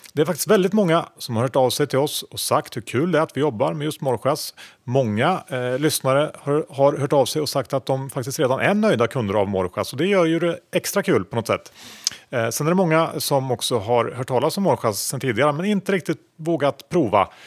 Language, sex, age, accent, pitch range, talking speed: Swedish, male, 30-49, Norwegian, 115-165 Hz, 245 wpm